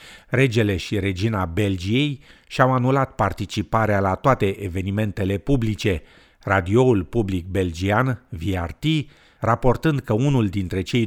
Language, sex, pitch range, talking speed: Romanian, male, 95-125 Hz, 110 wpm